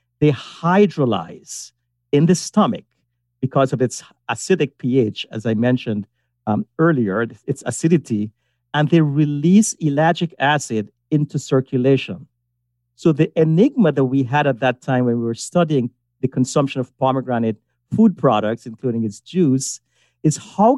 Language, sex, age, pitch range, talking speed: English, male, 50-69, 120-165 Hz, 140 wpm